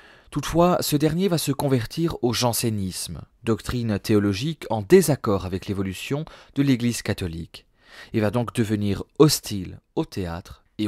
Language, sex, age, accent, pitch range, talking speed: French, male, 30-49, French, 100-130 Hz, 140 wpm